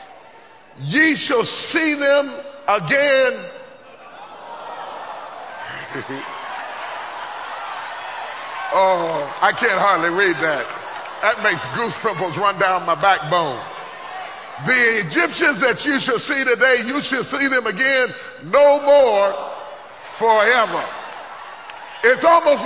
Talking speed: 100 wpm